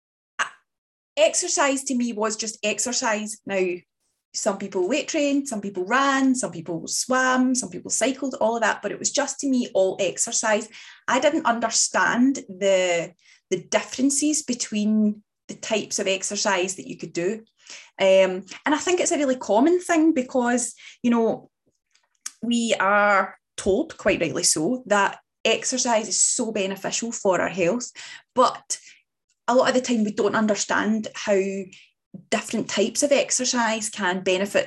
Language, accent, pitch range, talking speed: English, British, 200-260 Hz, 150 wpm